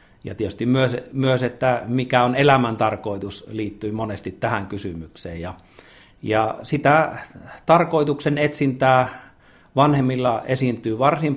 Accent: native